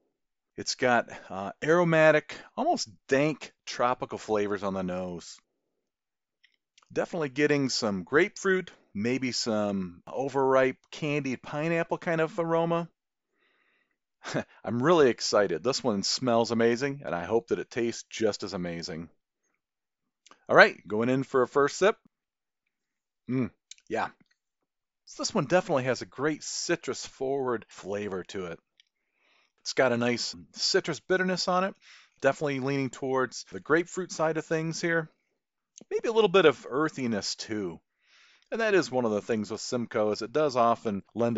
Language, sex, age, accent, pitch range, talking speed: English, male, 40-59, American, 105-155 Hz, 140 wpm